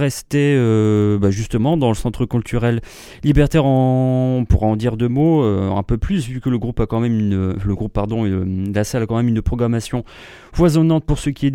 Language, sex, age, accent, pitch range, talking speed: English, male, 30-49, French, 115-145 Hz, 215 wpm